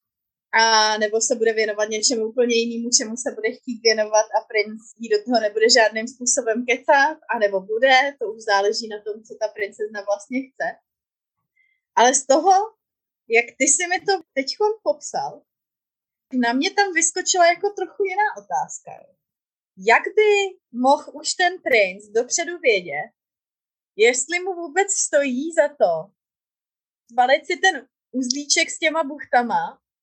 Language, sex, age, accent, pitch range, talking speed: Czech, female, 20-39, native, 235-335 Hz, 150 wpm